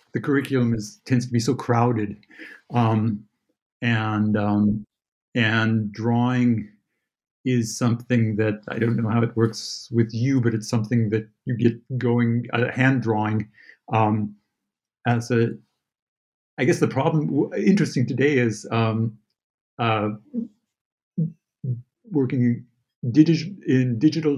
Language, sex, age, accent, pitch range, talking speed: English, male, 50-69, American, 110-130 Hz, 125 wpm